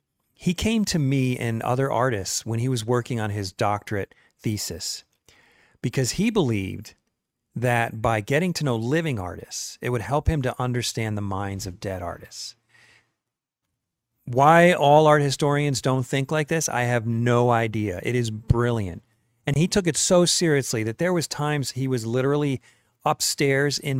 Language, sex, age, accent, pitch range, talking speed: English, male, 40-59, American, 110-140 Hz, 165 wpm